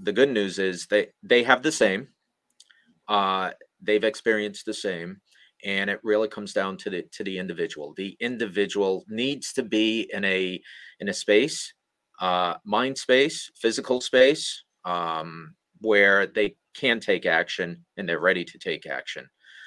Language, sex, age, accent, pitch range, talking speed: English, male, 30-49, American, 95-130 Hz, 155 wpm